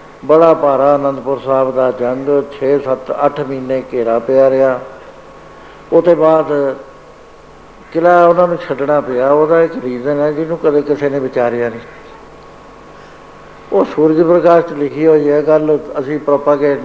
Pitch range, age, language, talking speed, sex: 140-170 Hz, 60-79, Punjabi, 140 wpm, male